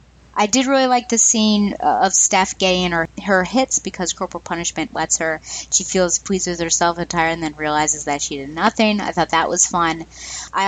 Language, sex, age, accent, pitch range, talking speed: English, female, 30-49, American, 165-205 Hz, 210 wpm